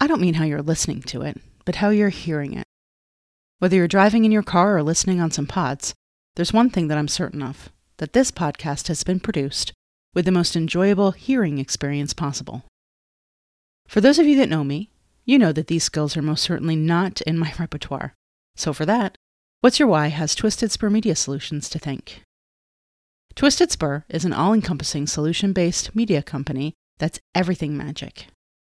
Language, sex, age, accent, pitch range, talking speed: English, female, 30-49, American, 145-200 Hz, 180 wpm